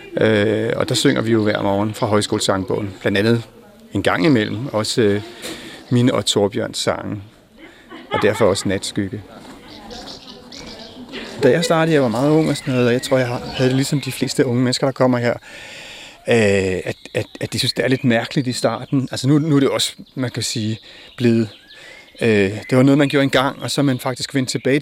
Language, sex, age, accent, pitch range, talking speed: Danish, male, 40-59, native, 110-135 Hz, 190 wpm